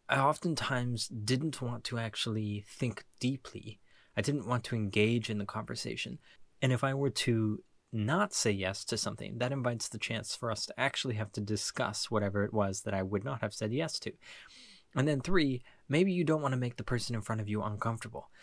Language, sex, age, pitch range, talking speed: English, male, 20-39, 110-130 Hz, 210 wpm